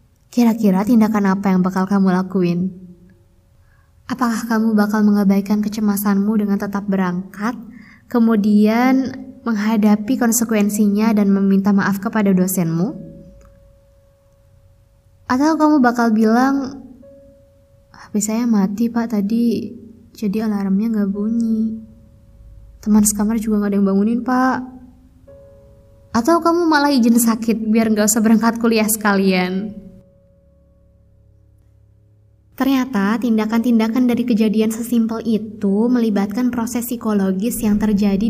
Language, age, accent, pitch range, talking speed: Indonesian, 20-39, native, 190-230 Hz, 105 wpm